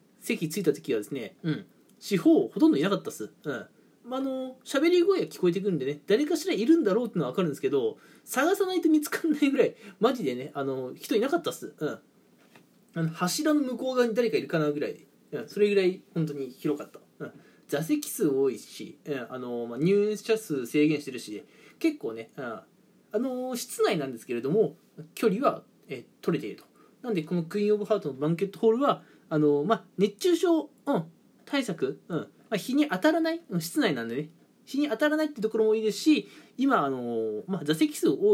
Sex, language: male, Japanese